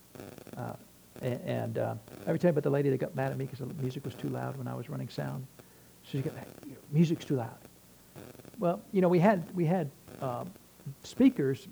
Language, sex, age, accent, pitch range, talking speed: English, male, 60-79, American, 135-195 Hz, 200 wpm